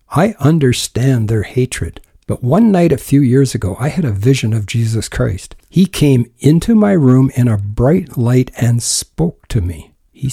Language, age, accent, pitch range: English, 60-79, American, 115-145 Hz